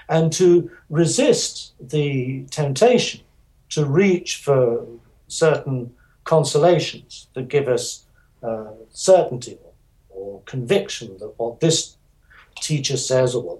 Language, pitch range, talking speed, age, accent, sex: English, 120-160 Hz, 110 wpm, 60-79, British, male